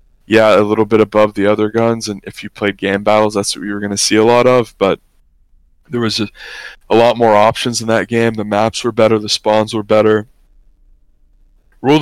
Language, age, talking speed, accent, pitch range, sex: English, 20-39, 220 wpm, American, 105-120 Hz, male